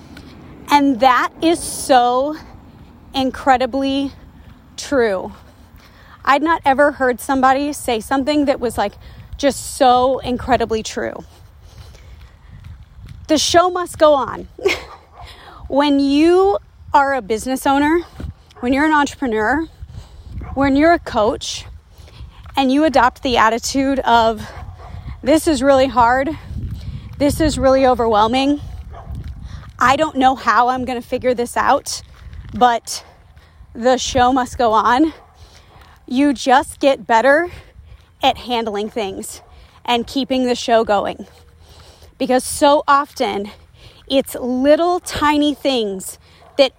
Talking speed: 115 wpm